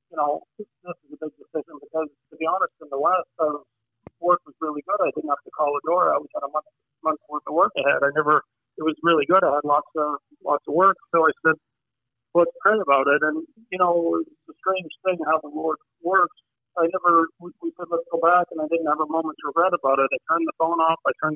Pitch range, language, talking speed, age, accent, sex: 150-170 Hz, English, 255 wpm, 50-69, American, male